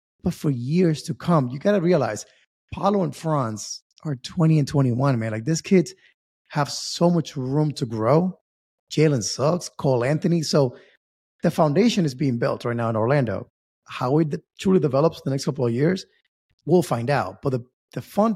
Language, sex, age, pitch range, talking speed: English, male, 30-49, 130-180 Hz, 185 wpm